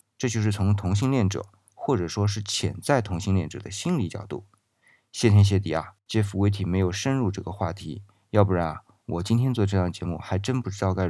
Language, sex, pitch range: Chinese, male, 90-110 Hz